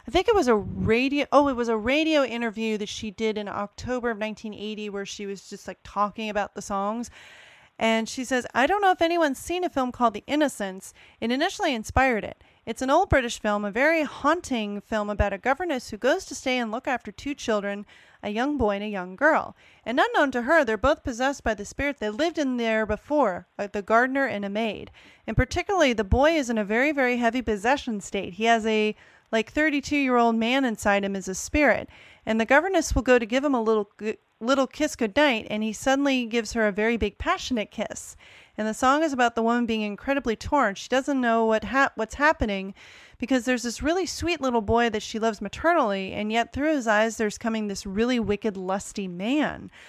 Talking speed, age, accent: 220 wpm, 30-49, American